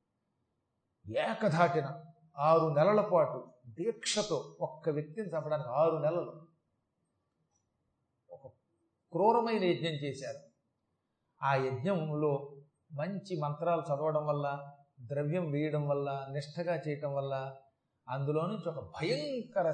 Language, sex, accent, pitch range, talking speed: Telugu, male, native, 145-210 Hz, 90 wpm